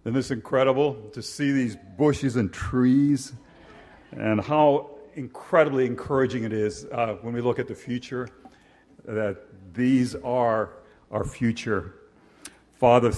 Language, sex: English, male